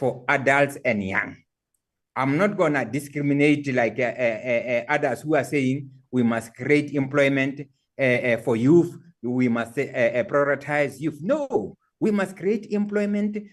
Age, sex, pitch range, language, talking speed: 60-79, male, 140-185 Hz, English, 155 wpm